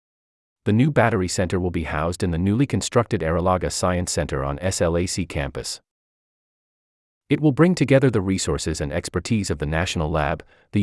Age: 40-59